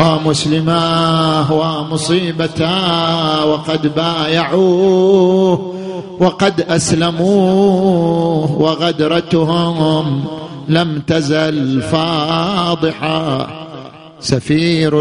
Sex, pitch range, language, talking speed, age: male, 155-190 Hz, Arabic, 45 wpm, 50-69